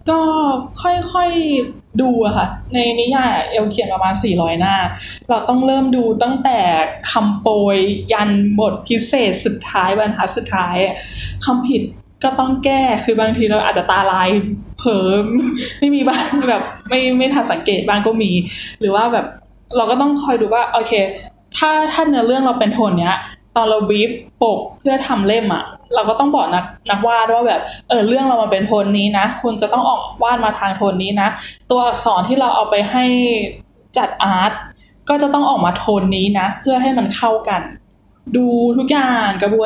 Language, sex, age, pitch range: Thai, female, 10-29, 205-255 Hz